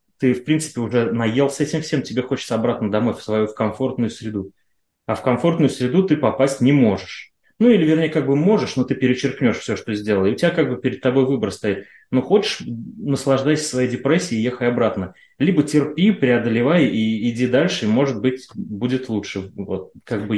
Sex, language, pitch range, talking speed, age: male, Russian, 110-140 Hz, 205 wpm, 20-39